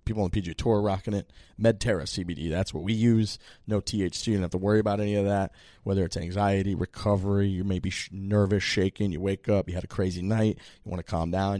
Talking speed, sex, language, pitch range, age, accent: 240 wpm, male, English, 90-110 Hz, 20-39, American